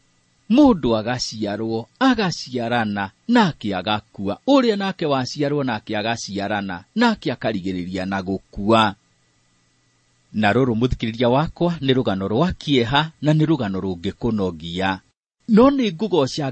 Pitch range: 105-150 Hz